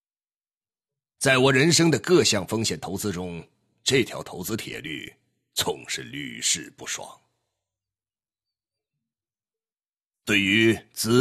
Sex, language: male, Chinese